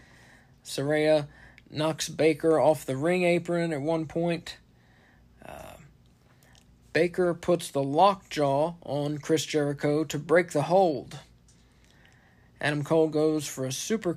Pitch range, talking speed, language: 130-160 Hz, 125 wpm, English